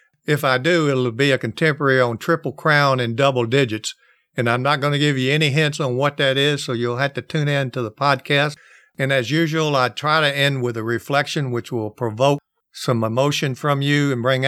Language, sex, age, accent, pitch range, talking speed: English, male, 50-69, American, 120-145 Hz, 225 wpm